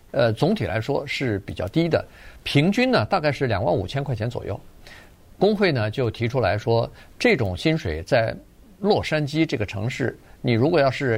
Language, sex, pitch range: Chinese, male, 105-150 Hz